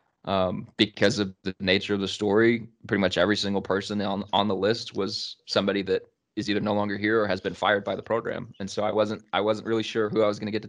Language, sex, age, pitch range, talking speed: English, male, 20-39, 100-115 Hz, 265 wpm